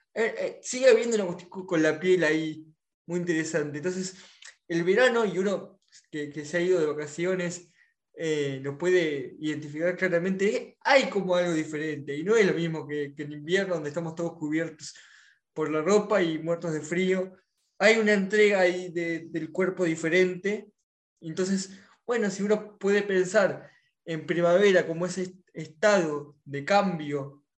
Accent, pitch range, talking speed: Argentinian, 155-190 Hz, 160 wpm